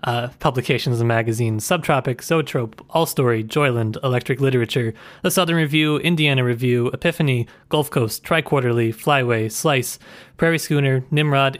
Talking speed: 130 wpm